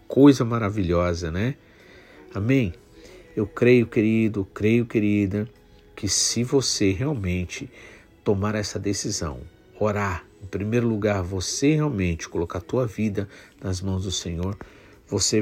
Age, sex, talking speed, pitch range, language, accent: 50-69, male, 120 wpm, 95-115 Hz, Portuguese, Brazilian